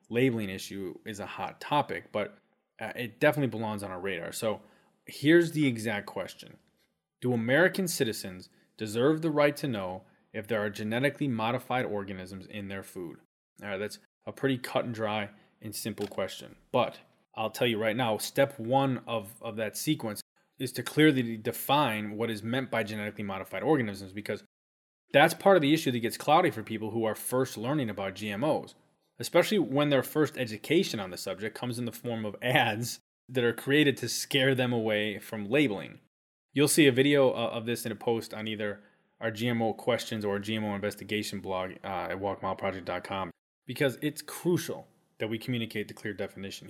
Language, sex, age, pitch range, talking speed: English, male, 20-39, 105-135 Hz, 180 wpm